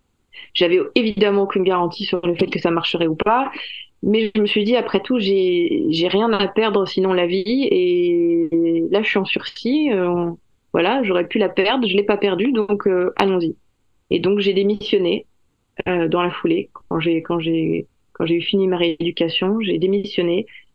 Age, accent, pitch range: 20-39, French, 170-215 Hz